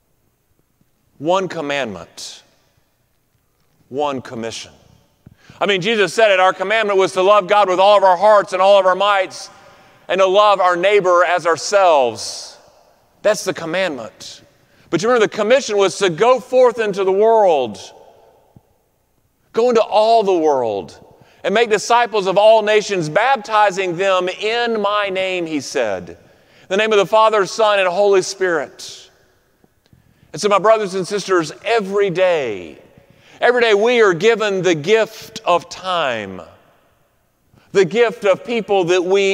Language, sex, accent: English, male, American